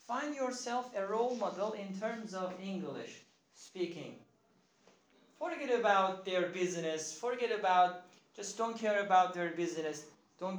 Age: 40-59